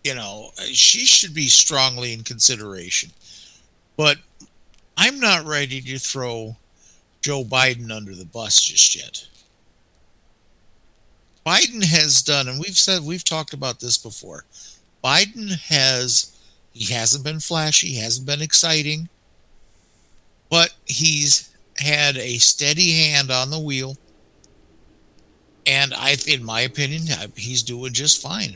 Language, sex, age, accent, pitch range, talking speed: English, male, 60-79, American, 110-145 Hz, 125 wpm